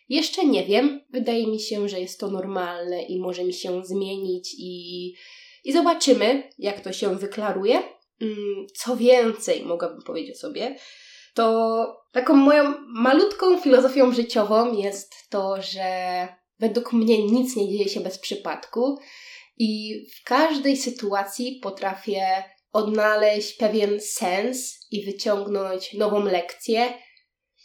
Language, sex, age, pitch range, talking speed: Polish, female, 20-39, 190-245 Hz, 120 wpm